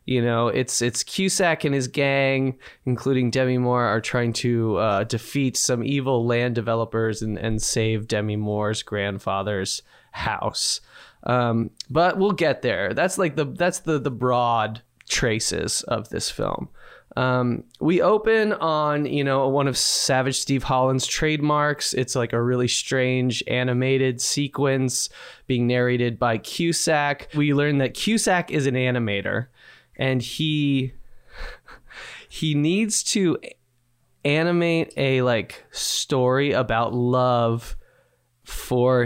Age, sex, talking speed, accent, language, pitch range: 20-39, male, 130 wpm, American, English, 120-150 Hz